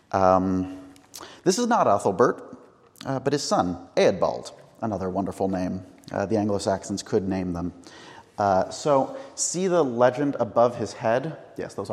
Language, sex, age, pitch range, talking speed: English, male, 30-49, 95-135 Hz, 140 wpm